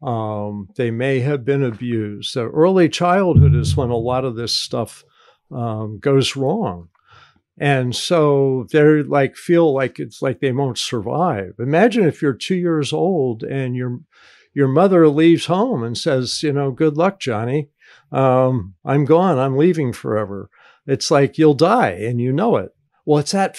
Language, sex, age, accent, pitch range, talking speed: English, male, 50-69, American, 125-160 Hz, 170 wpm